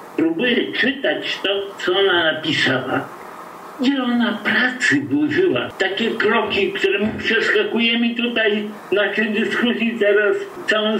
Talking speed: 110 wpm